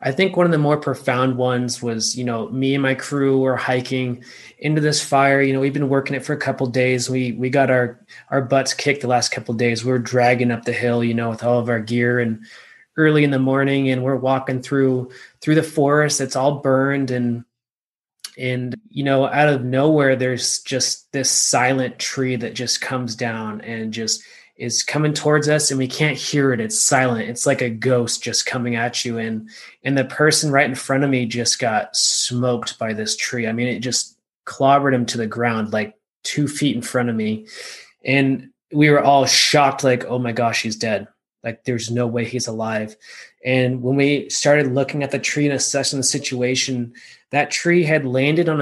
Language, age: English, 20-39